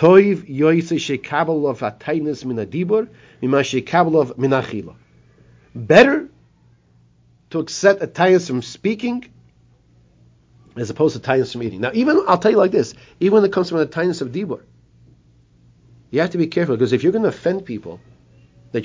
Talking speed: 135 wpm